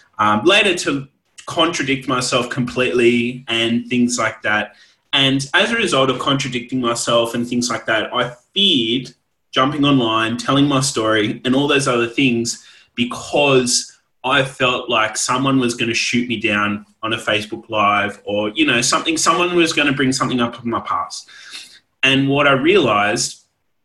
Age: 20-39